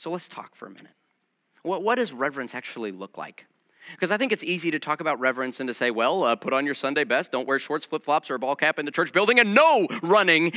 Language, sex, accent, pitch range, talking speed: English, male, American, 140-195 Hz, 265 wpm